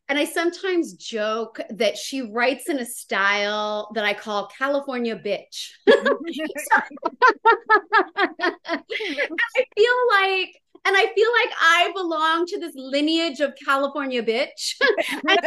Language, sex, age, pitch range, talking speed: English, female, 30-49, 235-340 Hz, 130 wpm